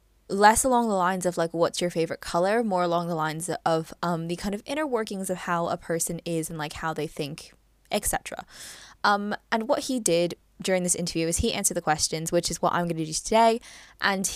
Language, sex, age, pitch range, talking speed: English, female, 10-29, 180-265 Hz, 225 wpm